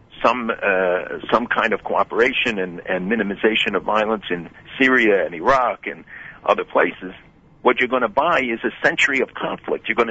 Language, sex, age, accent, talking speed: English, male, 50-69, American, 180 wpm